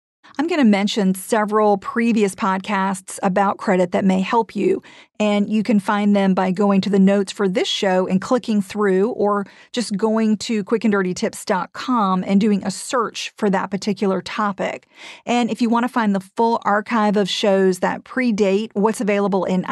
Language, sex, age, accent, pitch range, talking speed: English, female, 40-59, American, 195-225 Hz, 175 wpm